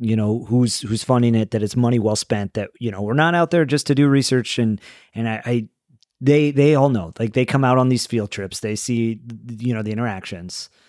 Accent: American